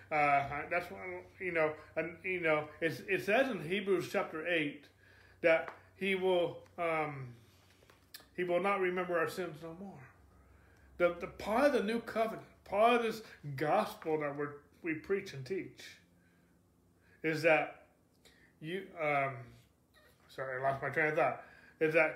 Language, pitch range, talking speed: English, 135-185 Hz, 150 wpm